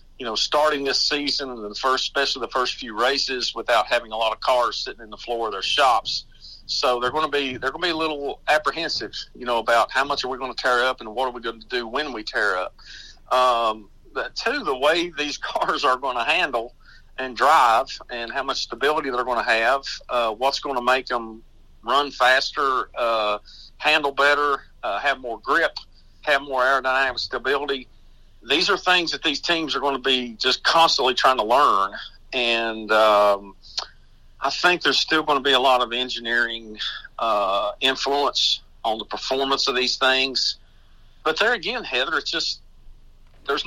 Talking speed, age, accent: 195 wpm, 50-69, American